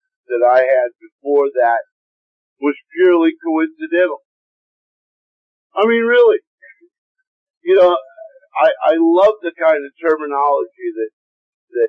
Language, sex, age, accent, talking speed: English, male, 50-69, American, 105 wpm